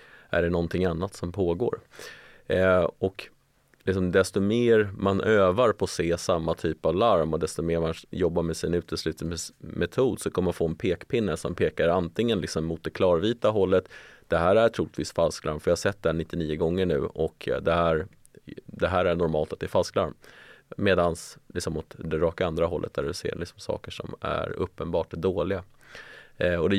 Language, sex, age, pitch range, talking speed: Swedish, male, 30-49, 85-100 Hz, 185 wpm